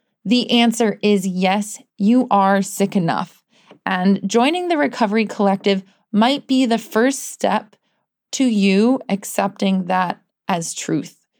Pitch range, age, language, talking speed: 185-230 Hz, 20-39, English, 125 wpm